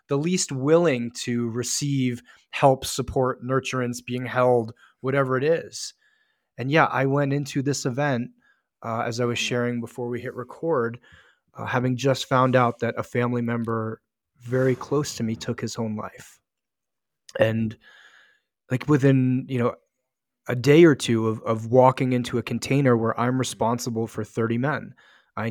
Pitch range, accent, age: 120-140 Hz, American, 20-39